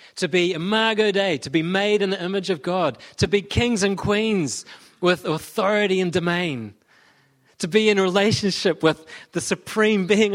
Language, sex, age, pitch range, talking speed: English, male, 30-49, 175-215 Hz, 180 wpm